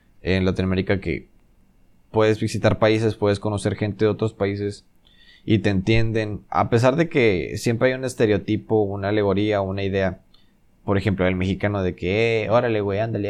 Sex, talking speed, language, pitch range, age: male, 165 wpm, Spanish, 100-120 Hz, 20-39